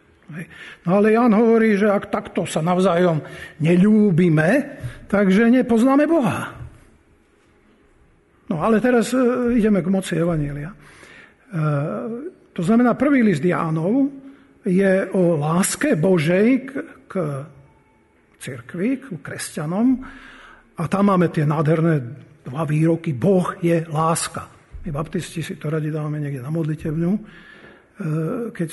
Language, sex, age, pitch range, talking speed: Slovak, male, 50-69, 165-215 Hz, 110 wpm